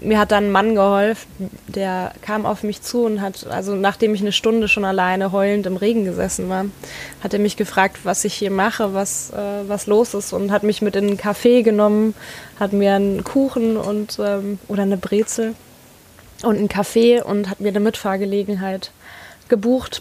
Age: 20-39